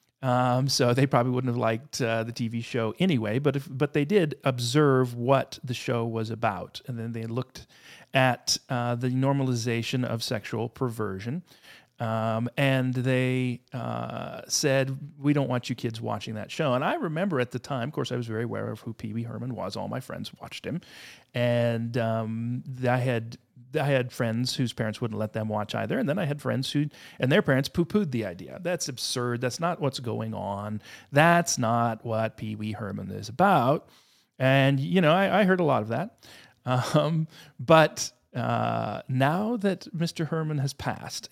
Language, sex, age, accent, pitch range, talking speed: English, male, 40-59, American, 115-140 Hz, 190 wpm